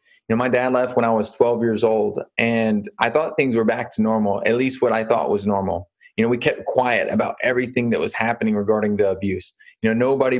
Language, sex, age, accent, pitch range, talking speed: English, male, 20-39, American, 110-130 Hz, 230 wpm